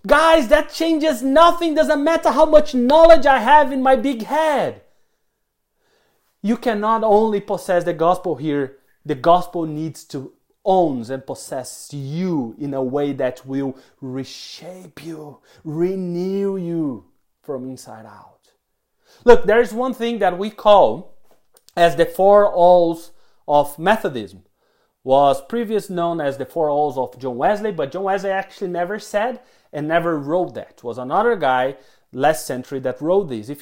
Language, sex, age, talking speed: English, male, 30-49, 155 wpm